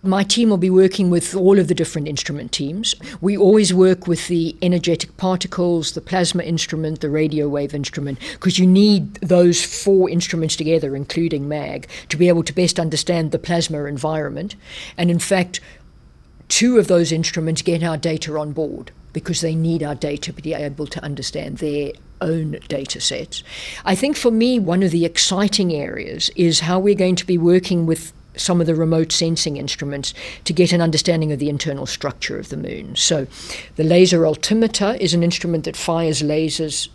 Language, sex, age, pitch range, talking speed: English, female, 50-69, 155-180 Hz, 185 wpm